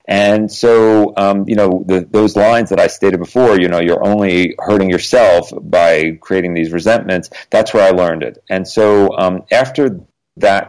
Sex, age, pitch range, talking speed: male, 40-59, 90-115 Hz, 180 wpm